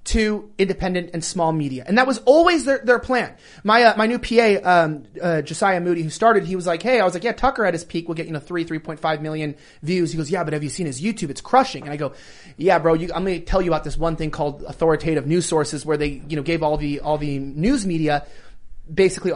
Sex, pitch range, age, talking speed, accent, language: male, 170-245 Hz, 30-49, 265 wpm, American, English